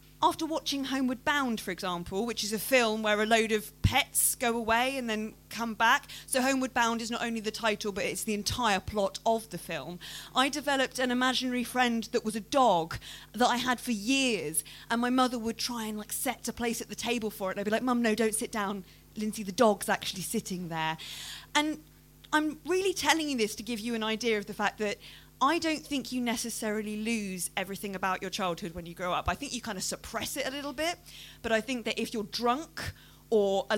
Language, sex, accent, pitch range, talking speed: English, female, British, 200-250 Hz, 230 wpm